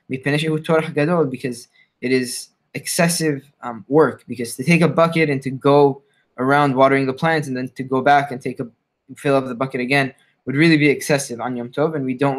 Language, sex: English, male